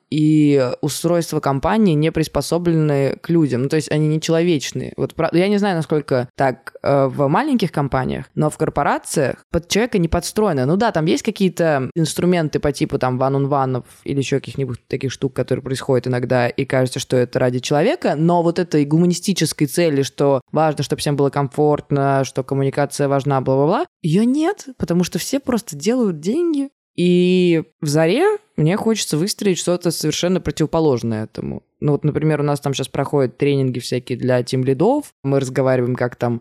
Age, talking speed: 20-39, 170 wpm